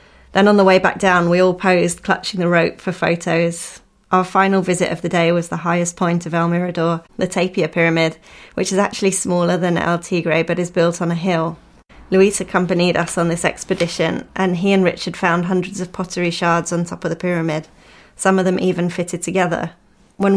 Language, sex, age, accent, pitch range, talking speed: English, female, 20-39, British, 170-185 Hz, 205 wpm